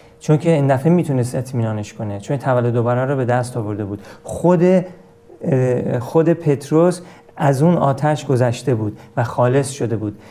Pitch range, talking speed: 125-155 Hz, 155 wpm